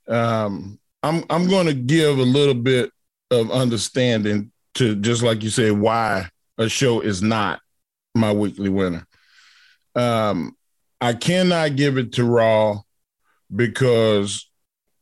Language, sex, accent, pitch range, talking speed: English, male, American, 110-145 Hz, 130 wpm